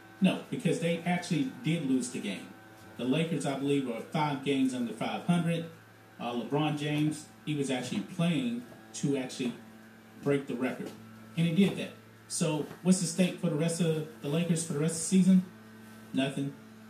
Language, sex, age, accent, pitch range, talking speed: English, male, 30-49, American, 120-170 Hz, 180 wpm